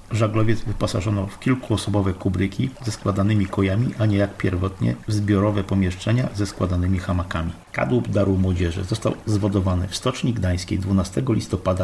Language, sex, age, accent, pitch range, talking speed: Polish, male, 50-69, native, 95-110 Hz, 140 wpm